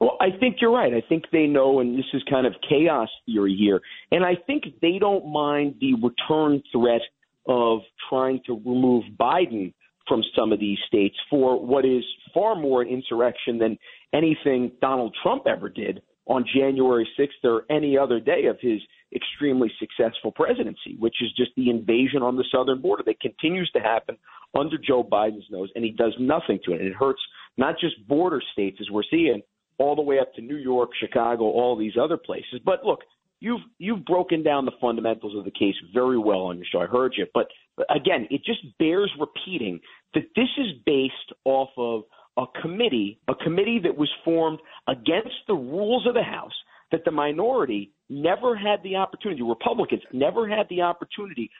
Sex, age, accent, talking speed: male, 40-59, American, 190 wpm